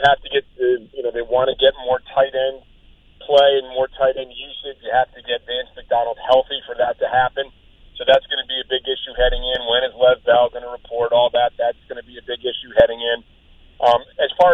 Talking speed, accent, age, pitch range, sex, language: 250 wpm, American, 40-59, 125-160 Hz, male, English